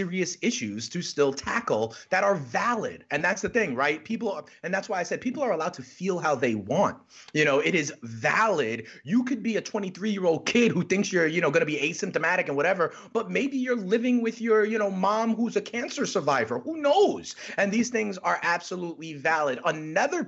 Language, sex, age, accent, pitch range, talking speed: English, male, 30-49, American, 155-225 Hz, 215 wpm